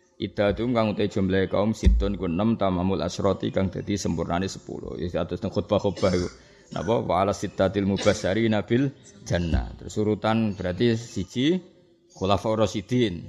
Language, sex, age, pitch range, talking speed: Indonesian, male, 20-39, 95-115 Hz, 120 wpm